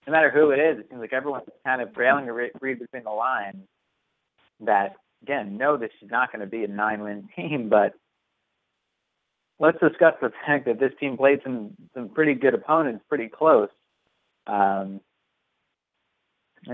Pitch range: 105-130 Hz